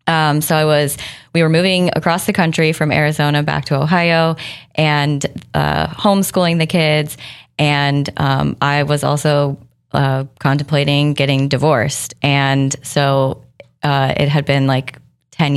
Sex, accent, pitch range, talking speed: female, American, 135-150 Hz, 145 wpm